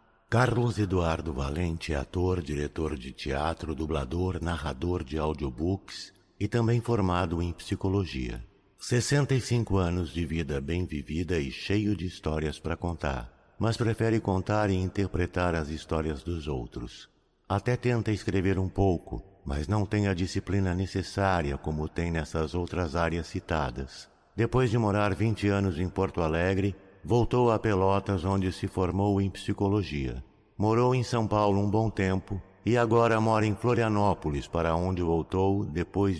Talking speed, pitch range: 145 wpm, 80-105 Hz